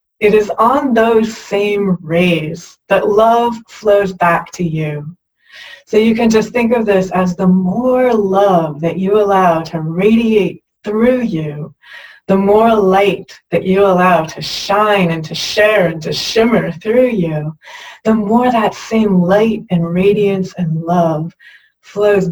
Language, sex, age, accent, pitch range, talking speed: English, female, 30-49, American, 175-215 Hz, 150 wpm